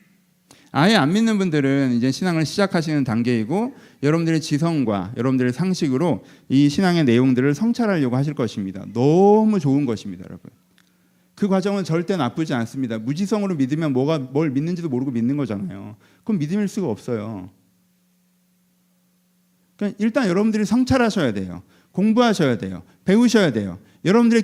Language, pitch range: Korean, 140-210 Hz